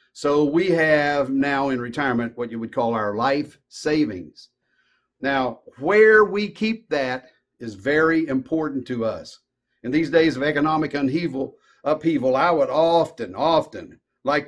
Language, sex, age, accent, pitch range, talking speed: English, male, 50-69, American, 130-180 Hz, 140 wpm